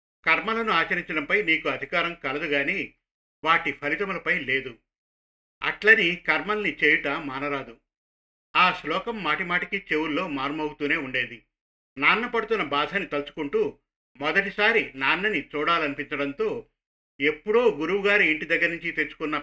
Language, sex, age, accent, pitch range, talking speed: Telugu, male, 50-69, native, 140-175 Hz, 95 wpm